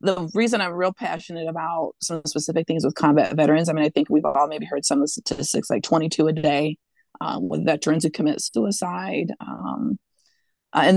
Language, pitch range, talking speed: English, 155-190 Hz, 200 wpm